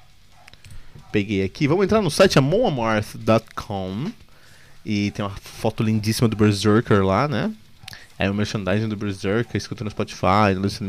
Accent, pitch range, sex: Brazilian, 110-150 Hz, male